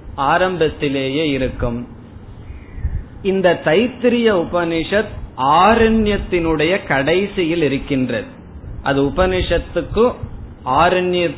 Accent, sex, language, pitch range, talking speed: native, male, Tamil, 135-180 Hz, 55 wpm